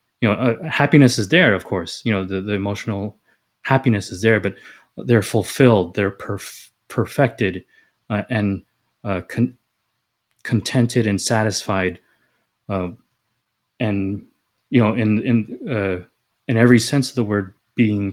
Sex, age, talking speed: male, 20-39, 140 wpm